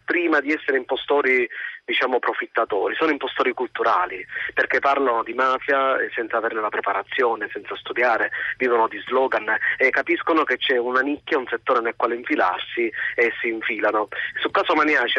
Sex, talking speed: male, 155 wpm